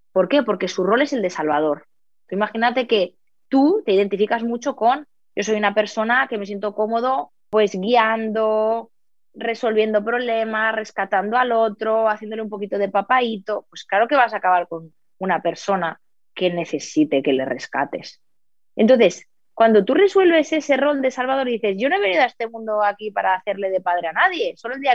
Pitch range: 205-290 Hz